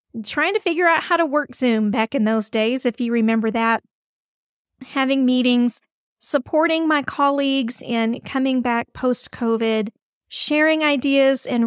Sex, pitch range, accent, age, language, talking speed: female, 230-295 Hz, American, 40-59, English, 145 wpm